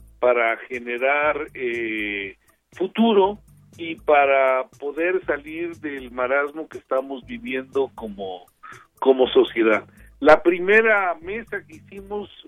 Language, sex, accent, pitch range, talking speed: Spanish, male, Mexican, 130-185 Hz, 100 wpm